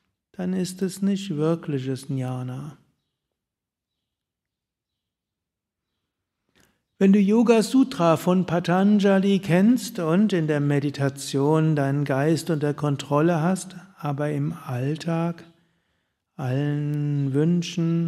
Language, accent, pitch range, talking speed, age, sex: German, German, 140-180 Hz, 90 wpm, 60-79, male